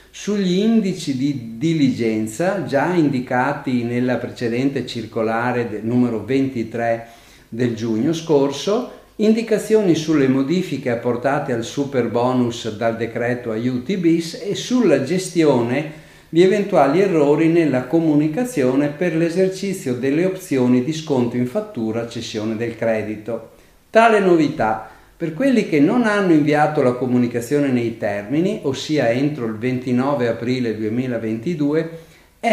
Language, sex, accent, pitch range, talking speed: Italian, male, native, 120-165 Hz, 115 wpm